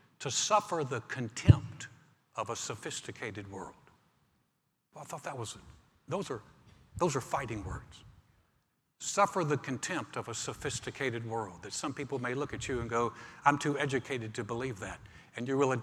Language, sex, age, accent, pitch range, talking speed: English, male, 60-79, American, 120-145 Hz, 160 wpm